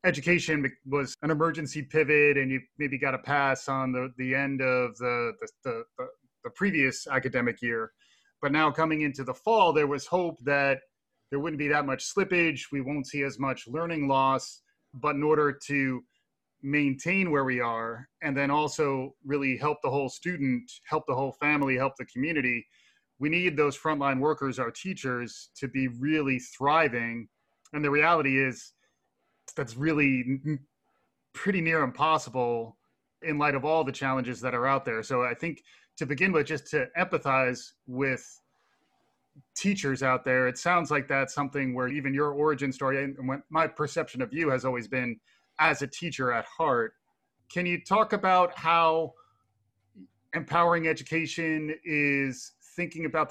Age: 30-49